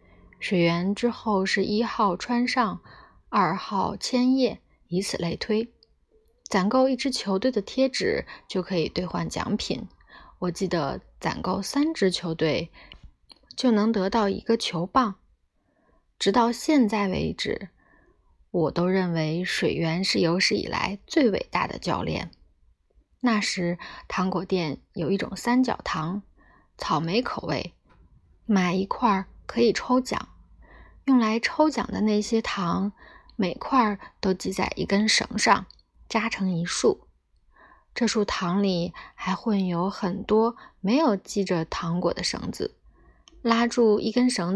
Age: 20-39